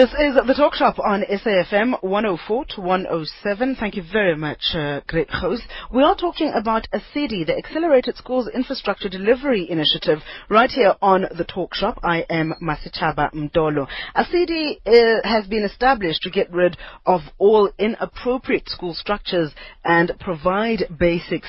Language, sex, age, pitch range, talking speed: English, female, 30-49, 160-220 Hz, 150 wpm